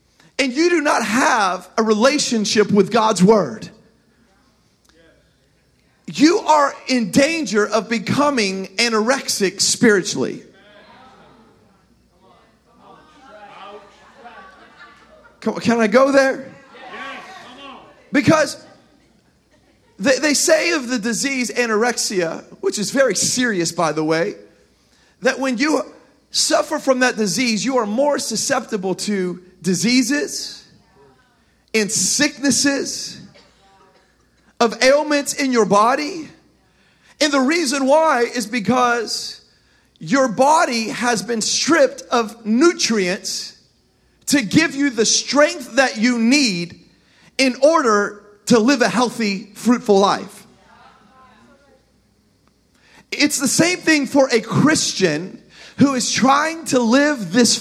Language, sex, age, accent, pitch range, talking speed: English, male, 40-59, American, 215-280 Hz, 105 wpm